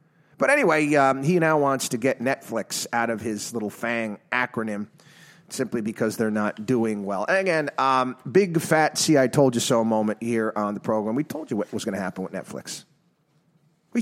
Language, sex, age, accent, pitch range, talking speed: English, male, 30-49, American, 115-185 Hz, 200 wpm